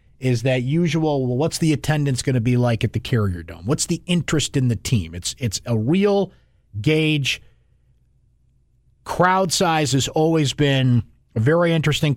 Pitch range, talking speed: 115-150 Hz, 170 wpm